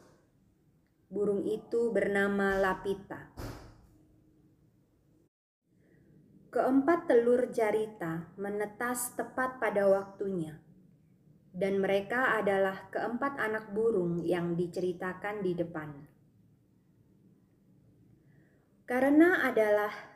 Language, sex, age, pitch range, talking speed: Indonesian, female, 30-49, 175-270 Hz, 70 wpm